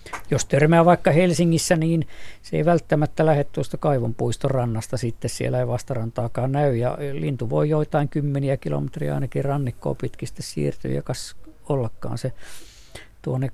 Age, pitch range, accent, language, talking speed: 50-69, 115-150 Hz, native, Finnish, 135 wpm